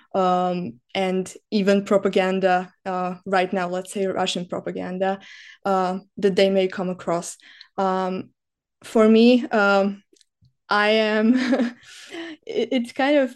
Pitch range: 185-215 Hz